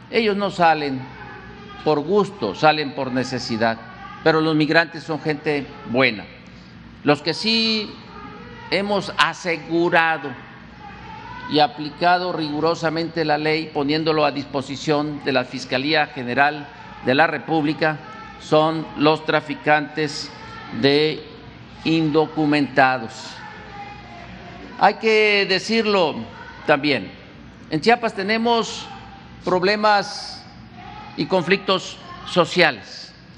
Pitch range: 145-180 Hz